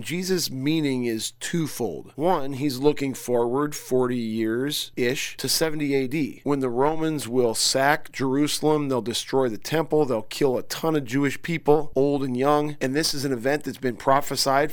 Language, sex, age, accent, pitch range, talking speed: English, male, 40-59, American, 130-150 Hz, 165 wpm